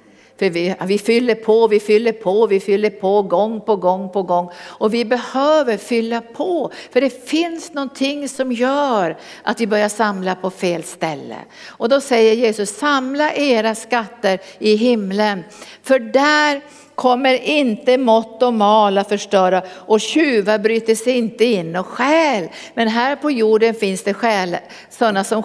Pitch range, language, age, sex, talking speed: 195-255 Hz, Swedish, 60-79, female, 155 wpm